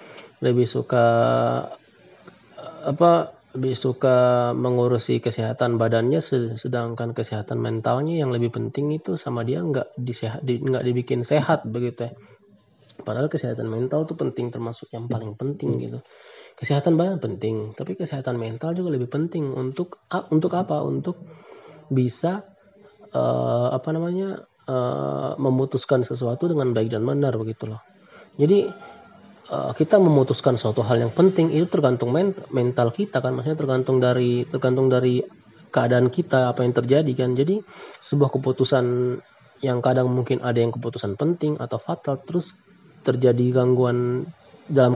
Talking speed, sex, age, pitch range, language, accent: 135 wpm, male, 20-39, 120-155 Hz, Indonesian, native